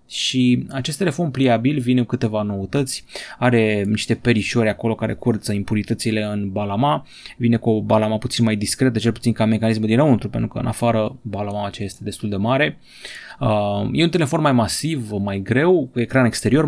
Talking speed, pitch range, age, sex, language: 175 wpm, 105-135 Hz, 20-39, male, Romanian